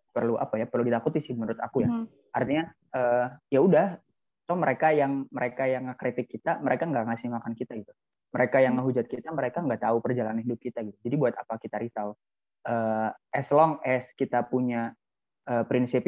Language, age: Indonesian, 20-39